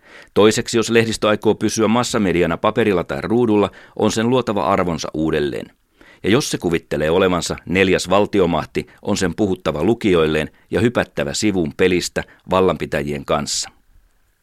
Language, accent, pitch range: Finnish, native, 90-115 Hz